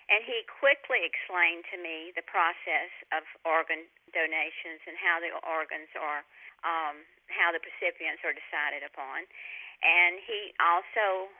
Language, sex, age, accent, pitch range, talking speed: English, female, 50-69, American, 165-185 Hz, 135 wpm